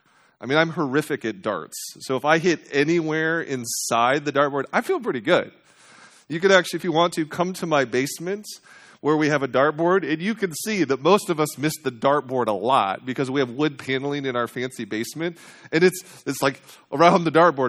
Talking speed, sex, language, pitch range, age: 215 wpm, male, English, 125-165 Hz, 30-49